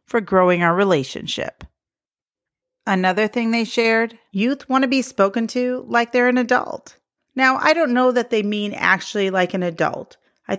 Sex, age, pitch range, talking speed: female, 40-59, 205-260 Hz, 165 wpm